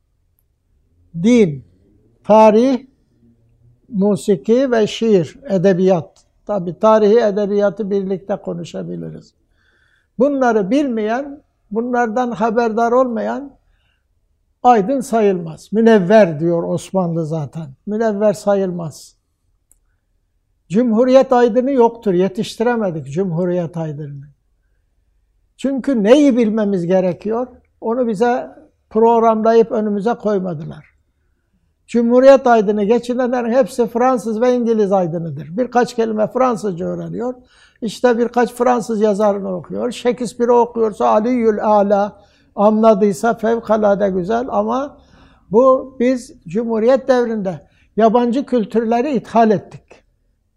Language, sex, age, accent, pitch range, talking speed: Turkish, male, 60-79, native, 175-235 Hz, 85 wpm